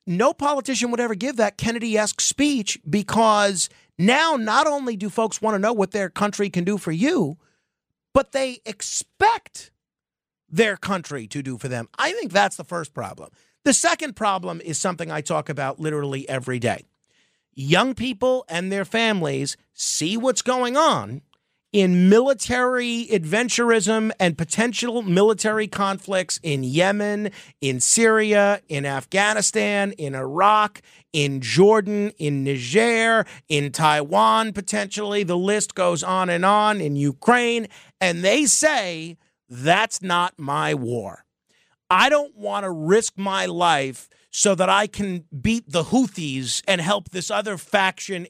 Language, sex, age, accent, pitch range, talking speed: English, male, 40-59, American, 160-220 Hz, 145 wpm